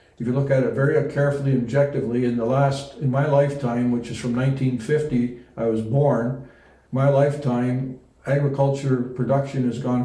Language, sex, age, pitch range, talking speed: English, male, 60-79, 130-140 Hz, 165 wpm